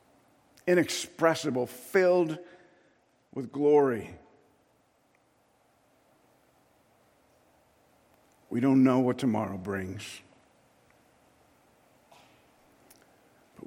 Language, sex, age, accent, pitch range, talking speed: English, male, 60-79, American, 125-185 Hz, 50 wpm